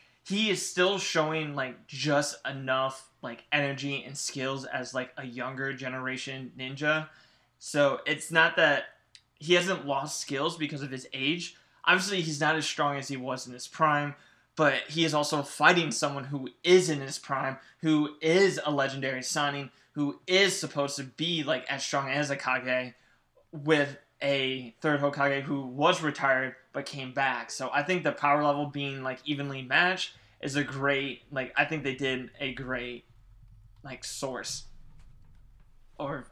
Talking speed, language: 165 wpm, English